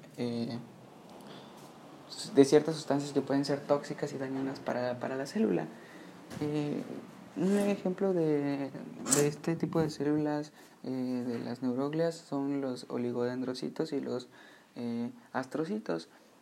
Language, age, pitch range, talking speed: English, 20-39, 125-155 Hz, 125 wpm